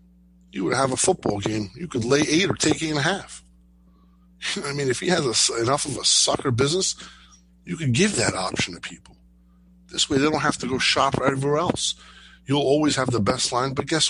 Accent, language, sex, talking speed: American, English, male, 215 wpm